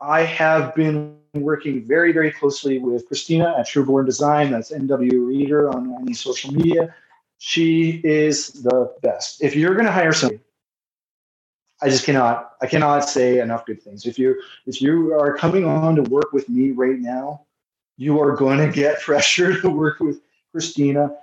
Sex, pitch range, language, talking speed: male, 125-155 Hz, English, 165 wpm